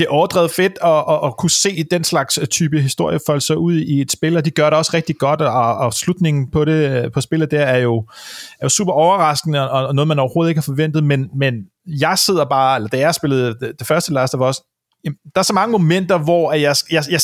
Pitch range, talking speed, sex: 145-185 Hz, 245 wpm, male